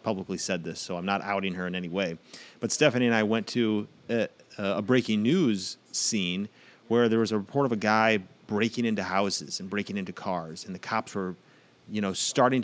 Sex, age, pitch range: male, 30-49, 100-120 Hz